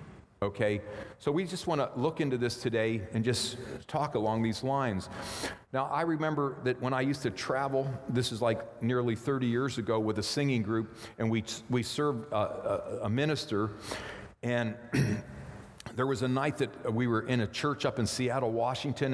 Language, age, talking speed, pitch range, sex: English, 50-69, 185 wpm, 110-135 Hz, male